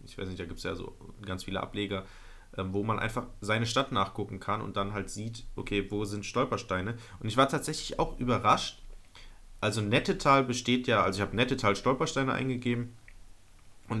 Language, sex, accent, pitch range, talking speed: German, male, German, 95-120 Hz, 190 wpm